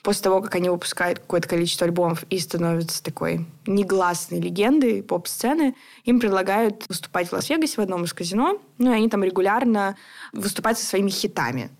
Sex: female